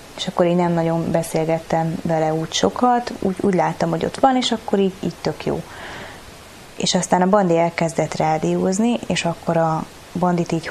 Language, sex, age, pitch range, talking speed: Hungarian, female, 20-39, 160-180 Hz, 180 wpm